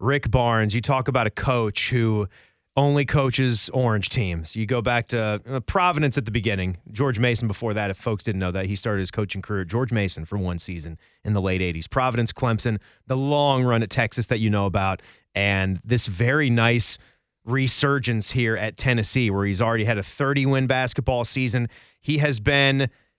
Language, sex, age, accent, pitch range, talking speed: English, male, 30-49, American, 115-175 Hz, 190 wpm